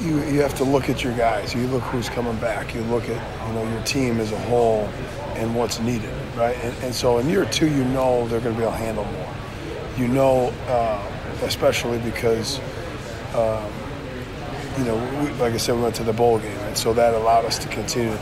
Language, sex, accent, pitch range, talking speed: English, male, American, 115-130 Hz, 225 wpm